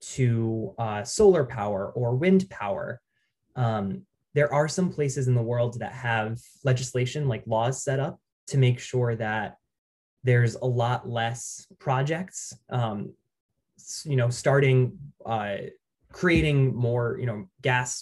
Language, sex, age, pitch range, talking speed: English, male, 20-39, 115-145 Hz, 135 wpm